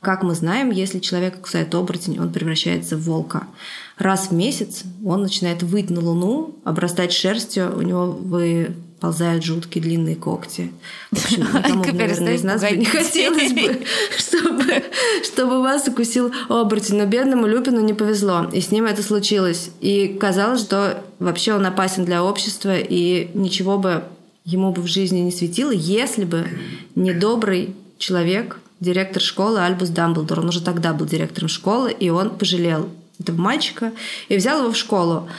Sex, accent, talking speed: female, native, 155 wpm